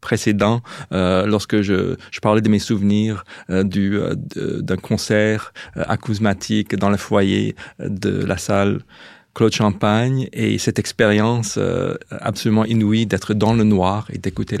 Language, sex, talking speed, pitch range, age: French, male, 150 wpm, 105-120 Hz, 40-59